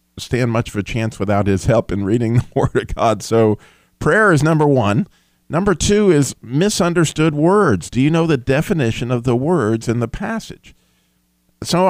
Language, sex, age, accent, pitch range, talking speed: English, male, 50-69, American, 95-130 Hz, 180 wpm